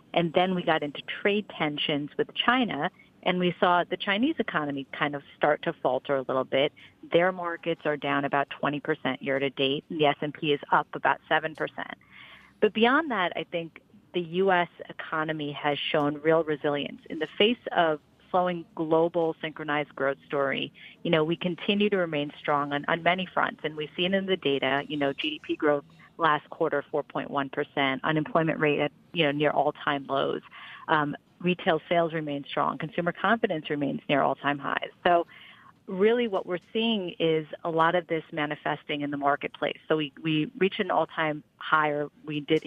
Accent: American